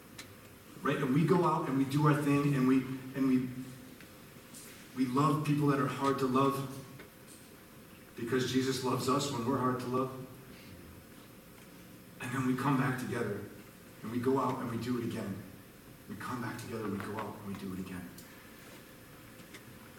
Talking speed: 175 wpm